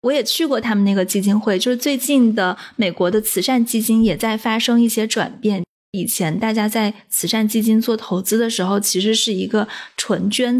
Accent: native